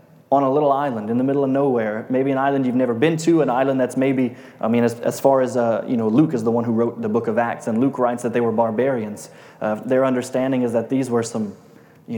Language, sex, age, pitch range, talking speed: English, male, 20-39, 115-140 Hz, 270 wpm